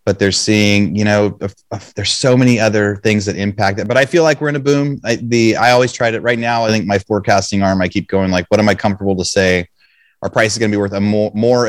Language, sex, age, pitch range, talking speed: English, male, 30-49, 95-115 Hz, 265 wpm